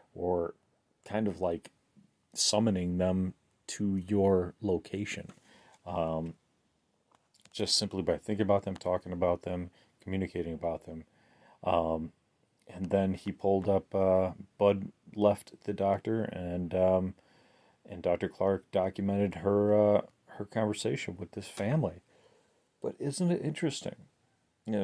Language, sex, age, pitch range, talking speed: English, male, 30-49, 95-110 Hz, 125 wpm